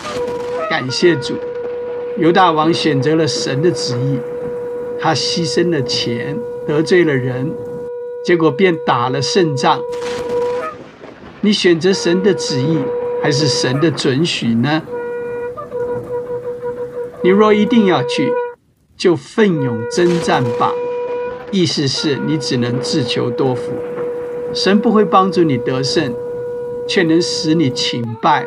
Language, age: Chinese, 60-79